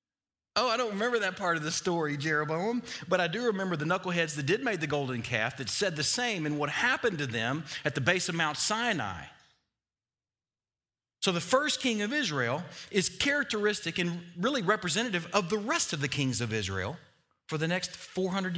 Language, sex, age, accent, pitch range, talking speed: English, male, 40-59, American, 110-180 Hz, 195 wpm